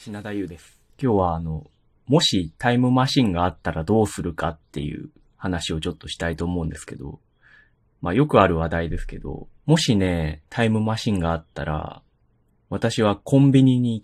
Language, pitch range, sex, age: Japanese, 85-130 Hz, male, 30-49